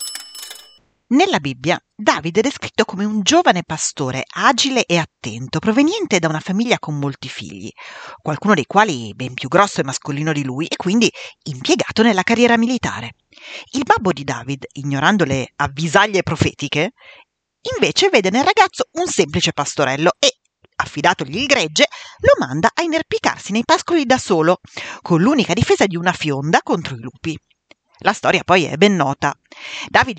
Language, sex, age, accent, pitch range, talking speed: Italian, female, 40-59, native, 150-240 Hz, 155 wpm